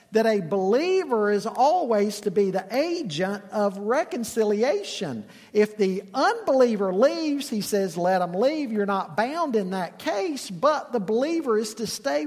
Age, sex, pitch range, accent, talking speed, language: 50-69, male, 185-245 Hz, American, 155 wpm, English